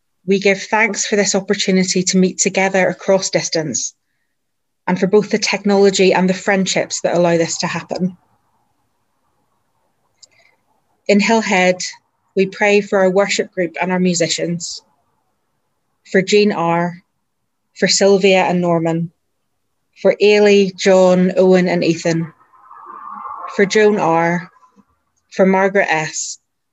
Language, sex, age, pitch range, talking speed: English, female, 30-49, 175-200 Hz, 120 wpm